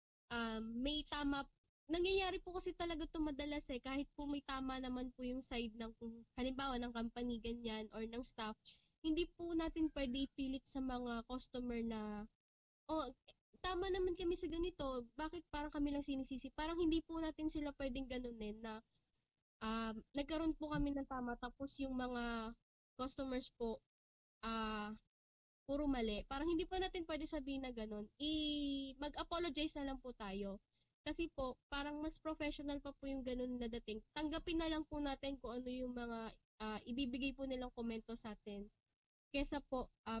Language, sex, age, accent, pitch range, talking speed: English, female, 20-39, Filipino, 235-300 Hz, 165 wpm